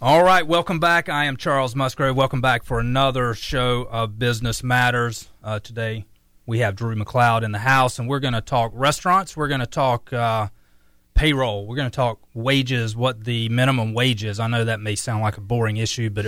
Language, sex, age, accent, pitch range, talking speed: English, male, 30-49, American, 110-135 Hz, 205 wpm